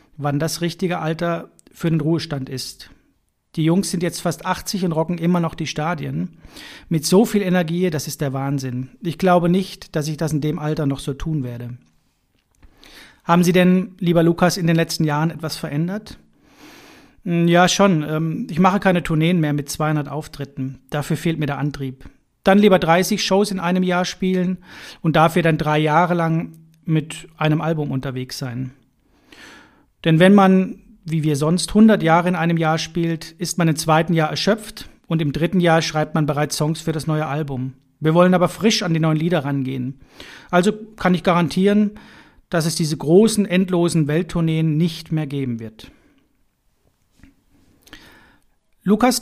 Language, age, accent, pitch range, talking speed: German, 40-59, German, 155-185 Hz, 170 wpm